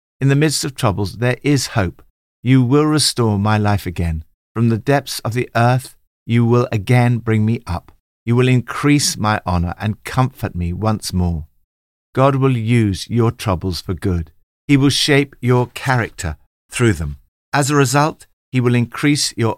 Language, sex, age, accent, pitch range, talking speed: English, male, 50-69, British, 90-125 Hz, 175 wpm